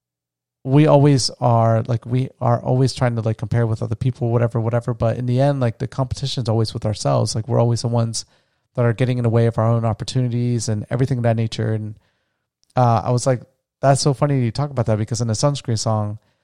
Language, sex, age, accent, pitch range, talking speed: English, male, 30-49, American, 115-130 Hz, 235 wpm